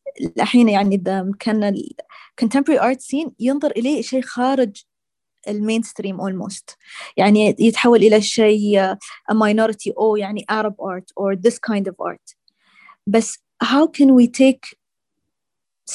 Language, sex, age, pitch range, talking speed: Arabic, female, 20-39, 215-260 Hz, 130 wpm